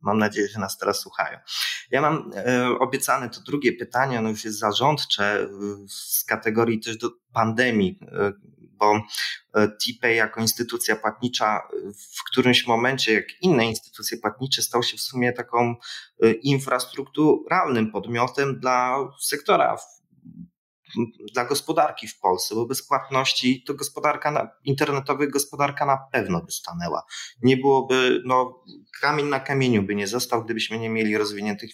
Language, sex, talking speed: Polish, male, 145 wpm